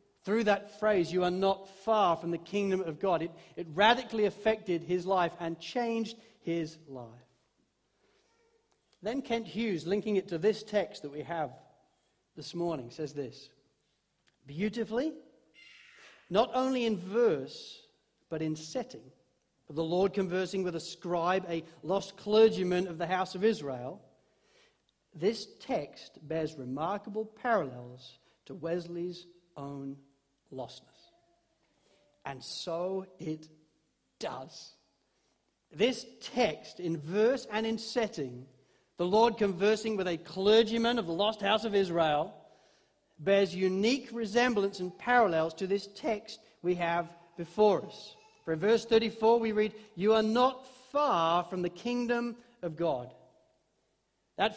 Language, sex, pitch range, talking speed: English, male, 170-225 Hz, 130 wpm